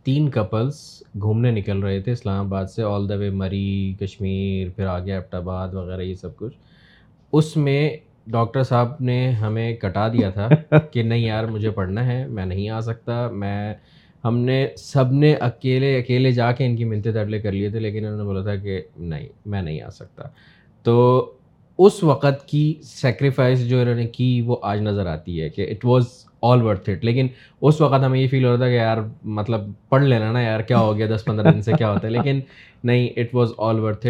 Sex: male